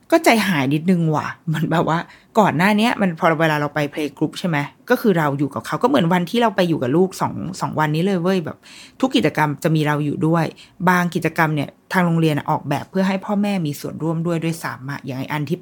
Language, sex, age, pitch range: Thai, female, 20-39, 150-195 Hz